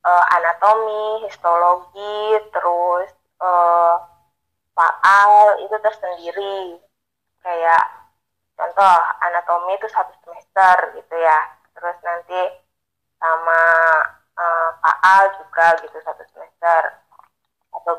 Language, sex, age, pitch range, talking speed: Indonesian, female, 20-39, 170-200 Hz, 90 wpm